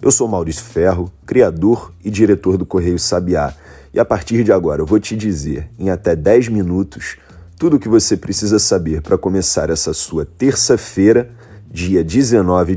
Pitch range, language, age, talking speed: 85-110 Hz, Portuguese, 40-59, 170 wpm